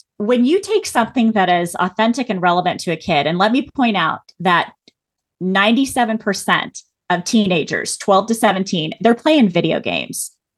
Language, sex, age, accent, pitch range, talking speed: English, female, 30-49, American, 190-270 Hz, 160 wpm